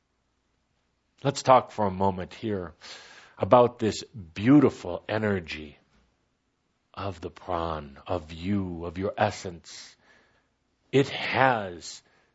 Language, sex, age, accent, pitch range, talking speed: English, male, 50-69, American, 95-115 Hz, 95 wpm